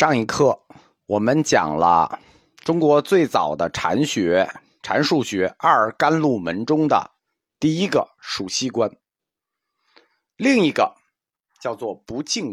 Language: Chinese